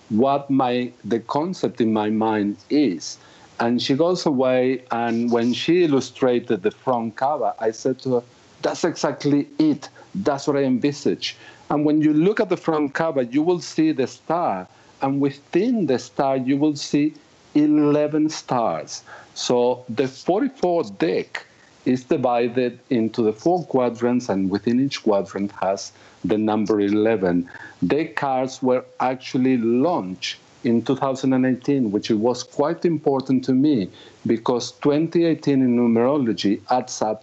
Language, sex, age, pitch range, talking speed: English, male, 50-69, 115-145 Hz, 145 wpm